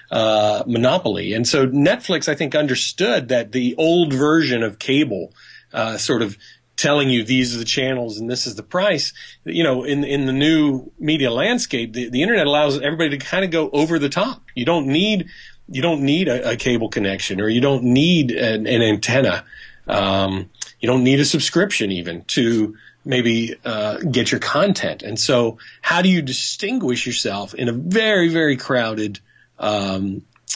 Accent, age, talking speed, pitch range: American, 40-59, 180 wpm, 115-160 Hz